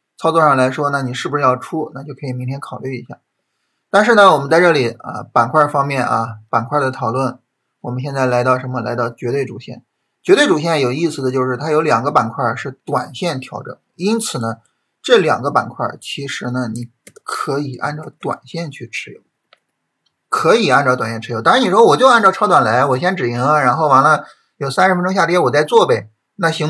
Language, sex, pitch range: Chinese, male, 125-165 Hz